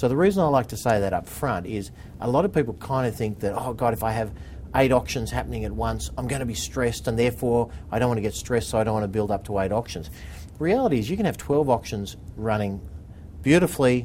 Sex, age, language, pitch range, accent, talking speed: male, 50-69, English, 95-120 Hz, Australian, 265 wpm